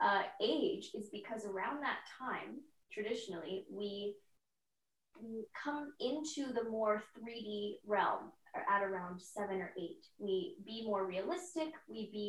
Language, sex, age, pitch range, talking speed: English, female, 10-29, 195-255 Hz, 125 wpm